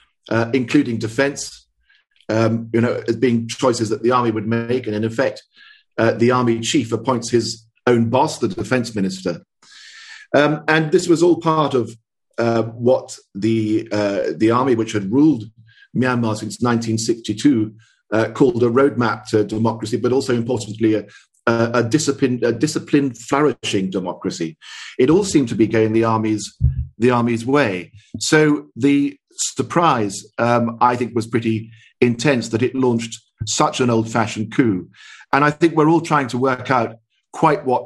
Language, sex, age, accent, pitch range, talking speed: English, male, 40-59, British, 110-135 Hz, 160 wpm